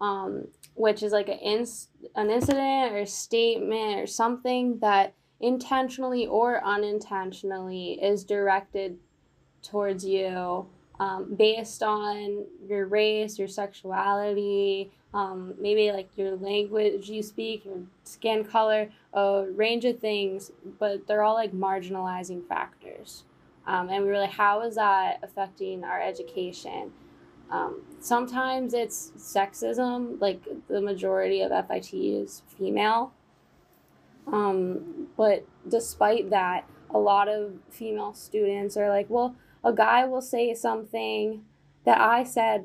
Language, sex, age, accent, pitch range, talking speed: English, female, 10-29, American, 195-230 Hz, 125 wpm